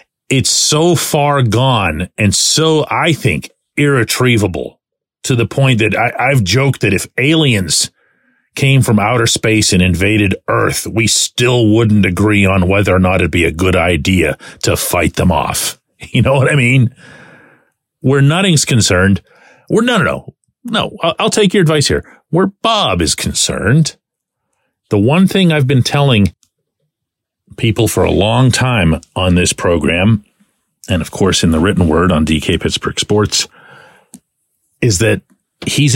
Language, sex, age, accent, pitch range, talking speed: English, male, 40-59, American, 95-135 Hz, 155 wpm